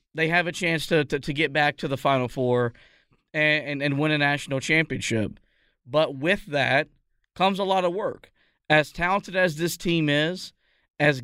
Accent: American